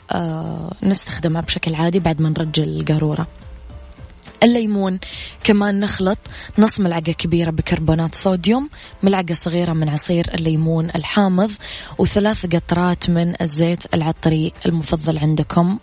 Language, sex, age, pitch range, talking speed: English, female, 20-39, 160-185 Hz, 105 wpm